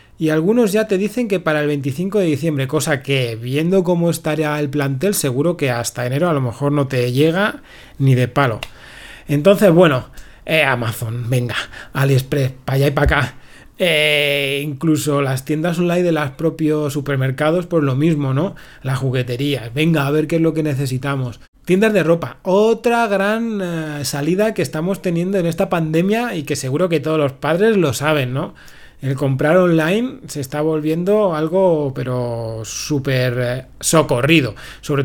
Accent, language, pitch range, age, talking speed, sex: Spanish, Spanish, 140-175 Hz, 30-49, 170 wpm, male